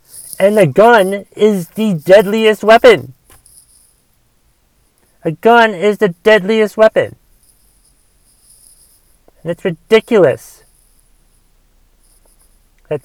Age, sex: 30-49, male